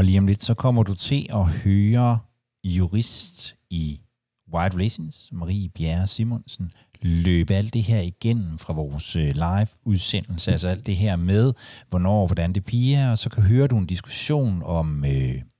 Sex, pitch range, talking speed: male, 90-120 Hz, 175 wpm